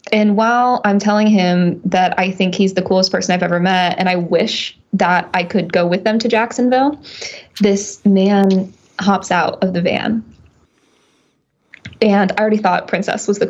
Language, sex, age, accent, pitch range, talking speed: English, female, 20-39, American, 185-220 Hz, 180 wpm